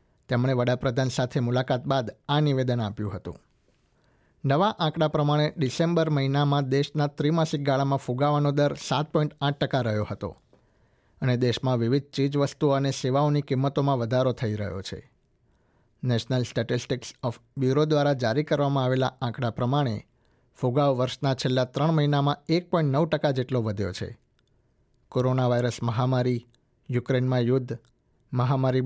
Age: 50-69